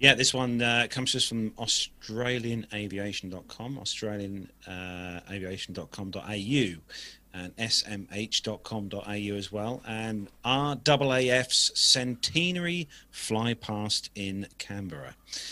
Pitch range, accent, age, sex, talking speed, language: 95-120 Hz, British, 40-59, male, 80 wpm, English